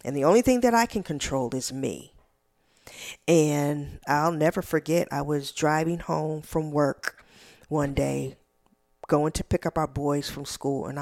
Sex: female